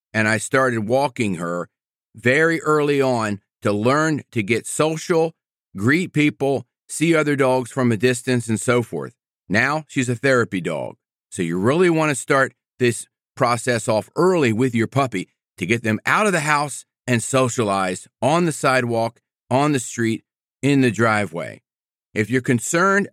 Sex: male